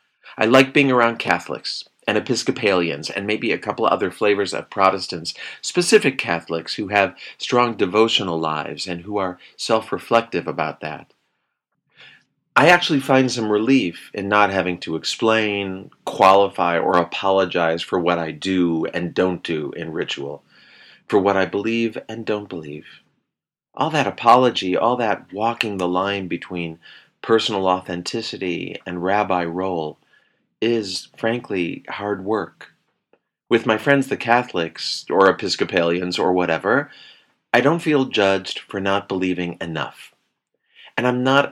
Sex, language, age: male, English, 40-59